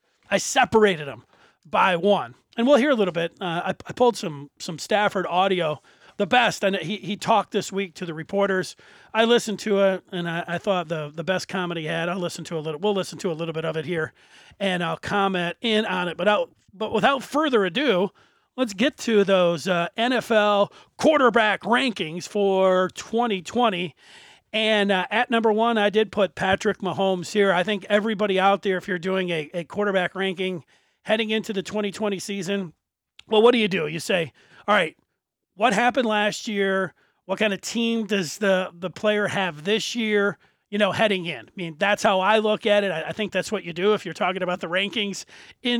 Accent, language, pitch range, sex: American, English, 180-215 Hz, male